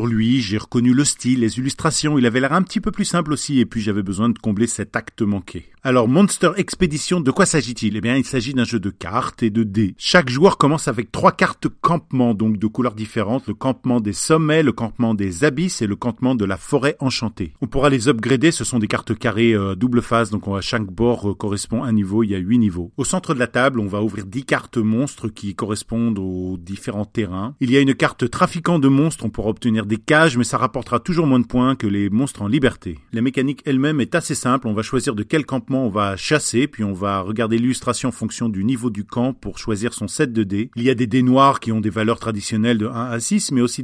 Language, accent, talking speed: French, French, 255 wpm